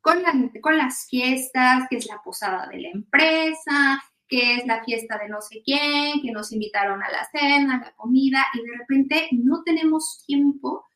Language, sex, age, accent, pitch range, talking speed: Spanish, female, 30-49, Mexican, 220-270 Hz, 190 wpm